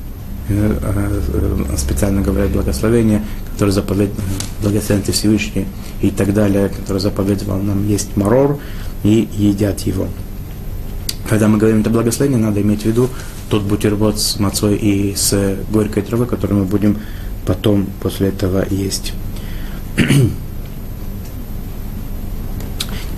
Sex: male